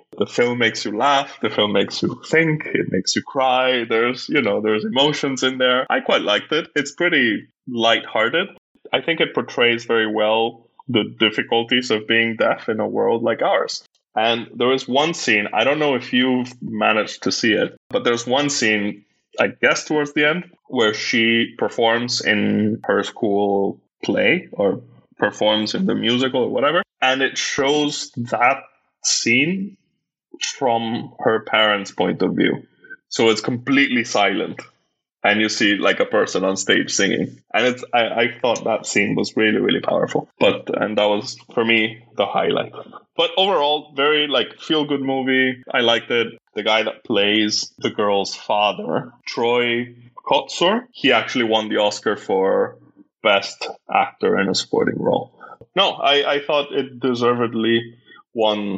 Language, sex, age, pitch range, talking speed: English, male, 20-39, 110-140 Hz, 165 wpm